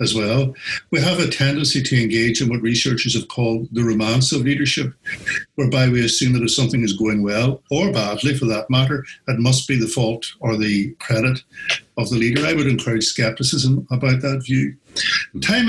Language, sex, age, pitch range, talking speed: English, male, 60-79, 115-140 Hz, 190 wpm